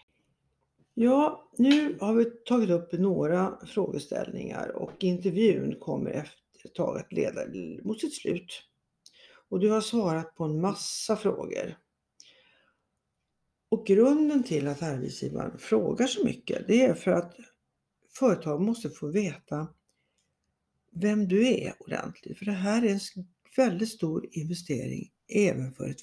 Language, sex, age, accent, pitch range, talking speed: Swedish, female, 60-79, native, 165-245 Hz, 130 wpm